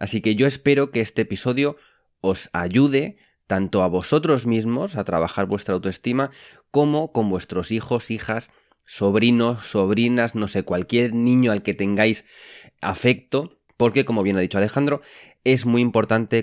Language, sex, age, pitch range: Spanish, male, 20-39, 100-135 Hz